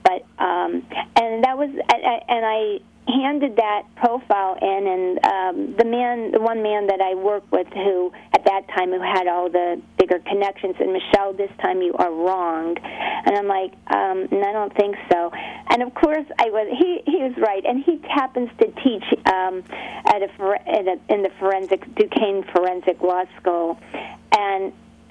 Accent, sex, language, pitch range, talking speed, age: American, female, English, 185-245 Hz, 185 wpm, 40-59